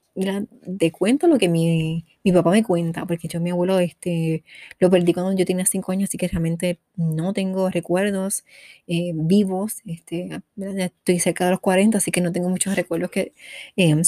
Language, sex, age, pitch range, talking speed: Spanish, female, 20-39, 170-210 Hz, 185 wpm